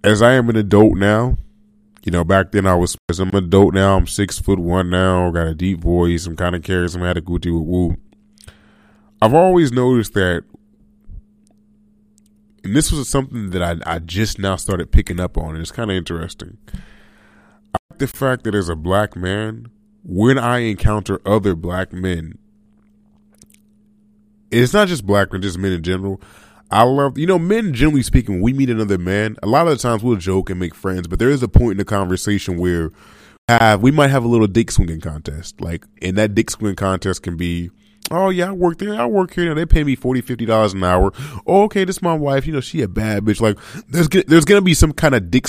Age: 20-39